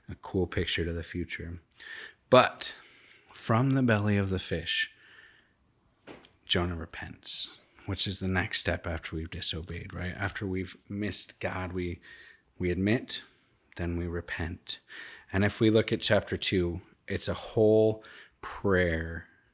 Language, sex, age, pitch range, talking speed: English, male, 30-49, 90-110 Hz, 140 wpm